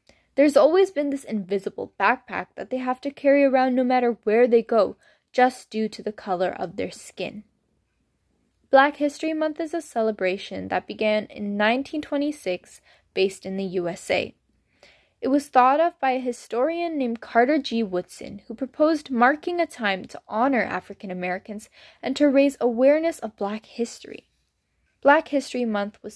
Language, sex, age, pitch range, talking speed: English, female, 10-29, 210-275 Hz, 160 wpm